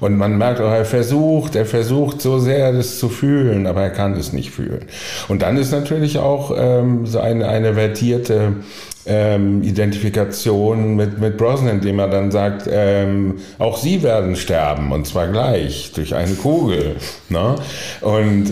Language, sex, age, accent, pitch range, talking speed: German, male, 50-69, German, 90-115 Hz, 165 wpm